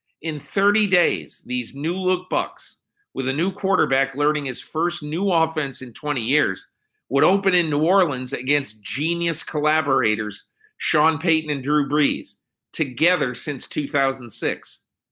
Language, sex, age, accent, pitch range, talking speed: English, male, 50-69, American, 125-165 Hz, 135 wpm